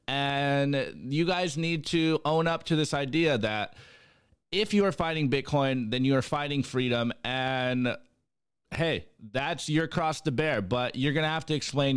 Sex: male